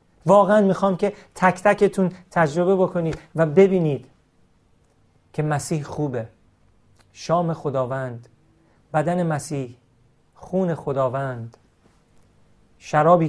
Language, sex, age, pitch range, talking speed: Persian, male, 40-59, 145-200 Hz, 85 wpm